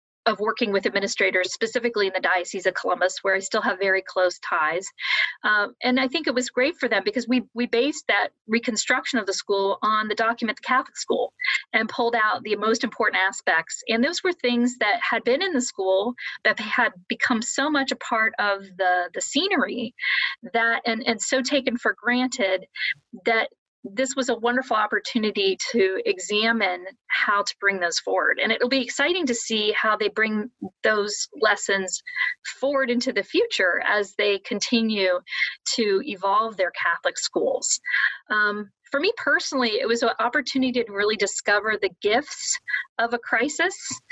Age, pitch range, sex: 40-59, 210-260 Hz, female